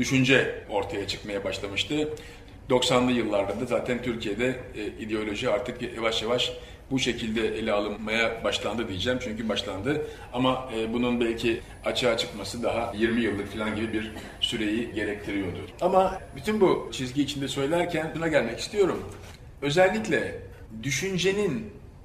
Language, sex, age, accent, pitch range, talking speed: Turkish, male, 40-59, native, 100-140 Hz, 120 wpm